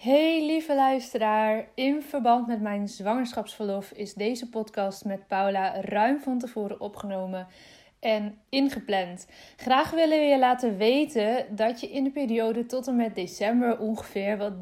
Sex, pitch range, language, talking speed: female, 205-260 Hz, Dutch, 150 wpm